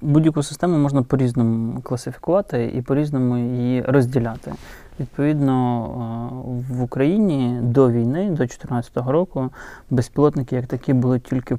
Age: 20-39